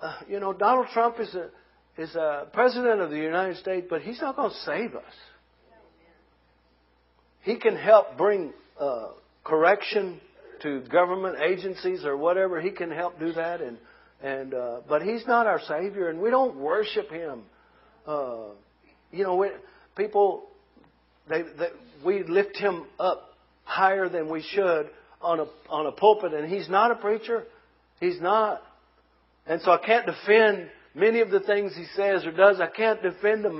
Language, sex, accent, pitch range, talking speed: English, male, American, 150-210 Hz, 170 wpm